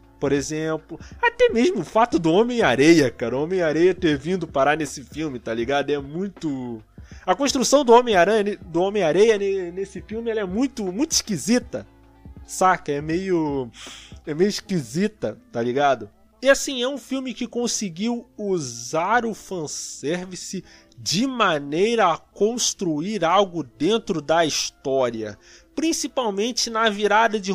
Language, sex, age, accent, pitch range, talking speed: Portuguese, male, 20-39, Brazilian, 155-215 Hz, 135 wpm